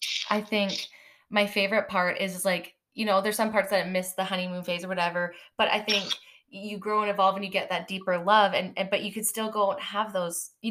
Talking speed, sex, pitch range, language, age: 240 wpm, female, 175-205 Hz, English, 20-39